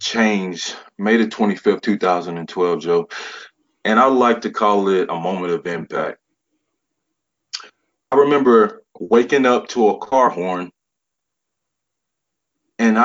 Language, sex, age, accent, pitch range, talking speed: English, male, 30-49, American, 95-120 Hz, 115 wpm